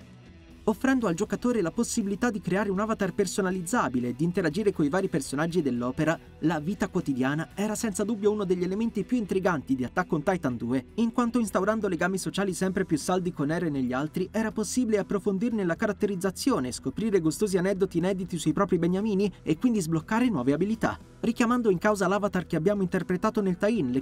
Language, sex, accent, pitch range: Italian, male, native, 160-215 Hz